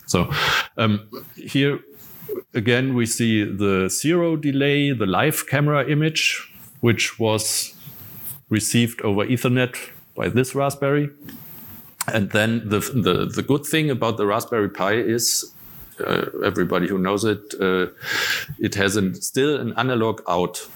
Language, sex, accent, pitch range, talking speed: Turkish, male, German, 95-120 Hz, 135 wpm